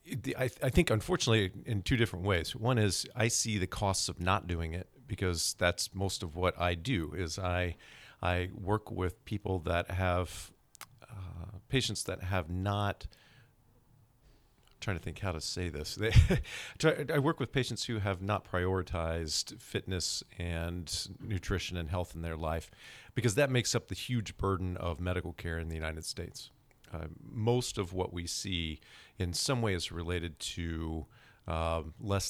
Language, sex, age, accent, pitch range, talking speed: English, male, 40-59, American, 85-105 Hz, 170 wpm